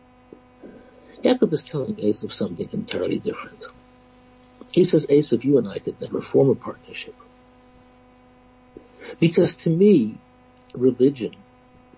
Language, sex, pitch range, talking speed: English, male, 125-160 Hz, 115 wpm